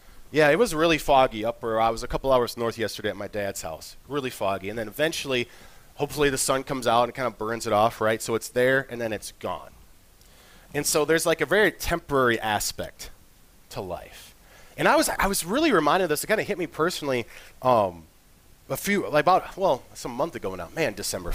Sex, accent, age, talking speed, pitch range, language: male, American, 30-49, 220 wpm, 105-145 Hz, English